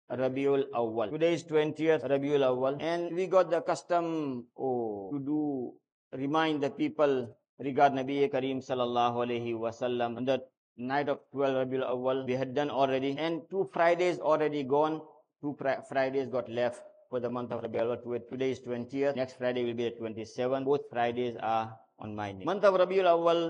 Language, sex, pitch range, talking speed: English, male, 125-165 Hz, 180 wpm